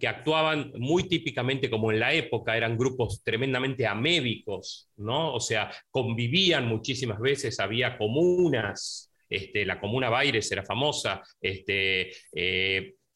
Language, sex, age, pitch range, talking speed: Spanish, male, 40-59, 95-135 Hz, 130 wpm